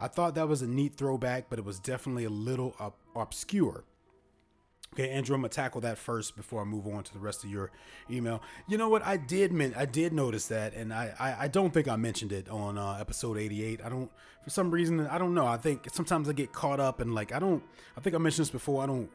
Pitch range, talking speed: 110-155 Hz, 255 wpm